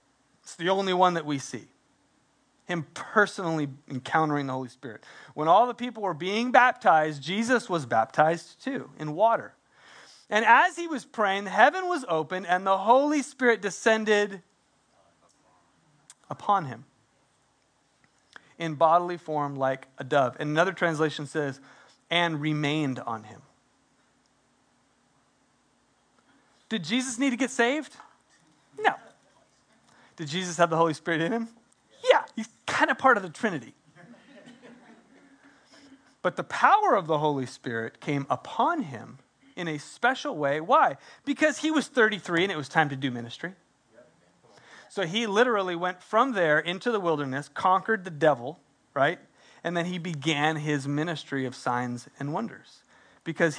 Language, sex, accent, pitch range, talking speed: English, male, American, 145-230 Hz, 145 wpm